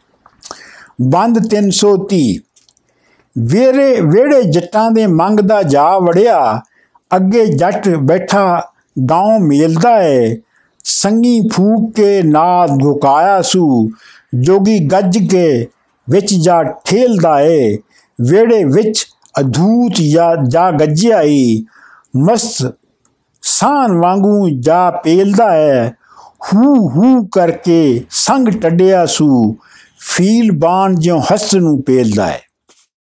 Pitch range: 150-220 Hz